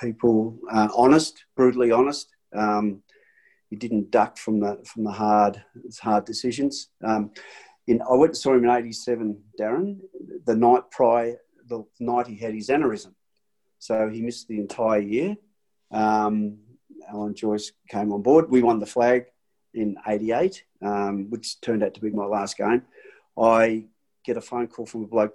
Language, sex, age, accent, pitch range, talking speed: English, male, 40-59, Australian, 105-125 Hz, 165 wpm